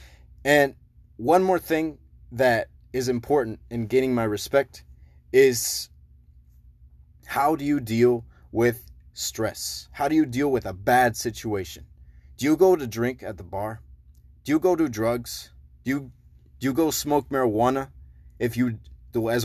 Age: 20-39